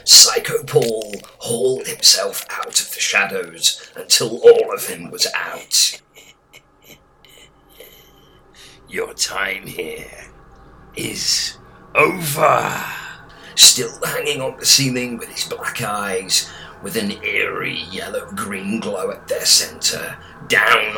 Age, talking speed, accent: 40-59, 105 wpm, British